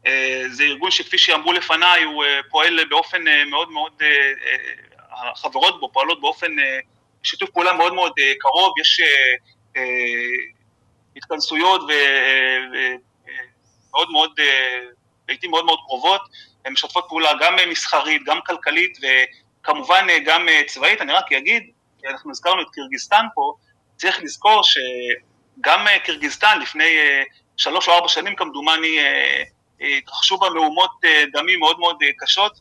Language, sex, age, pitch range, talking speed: Hebrew, male, 30-49, 145-215 Hz, 115 wpm